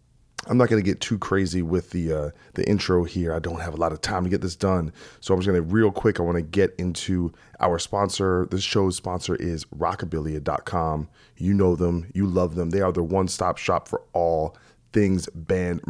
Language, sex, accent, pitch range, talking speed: English, male, American, 85-100 Hz, 210 wpm